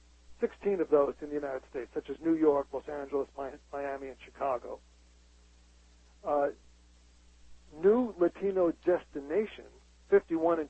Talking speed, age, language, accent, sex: 125 wpm, 60-79, English, American, male